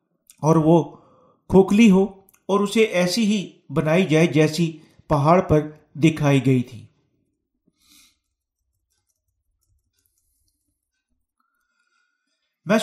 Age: 50-69